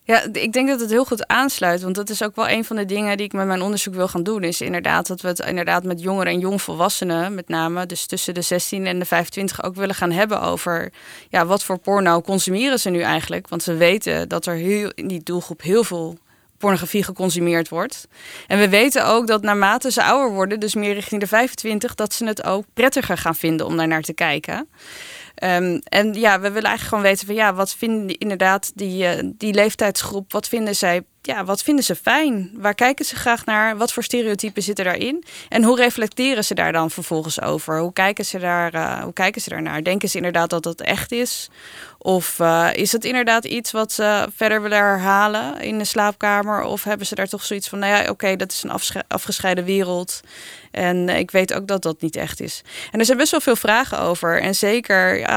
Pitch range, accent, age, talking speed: 180-215 Hz, Dutch, 20-39, 225 wpm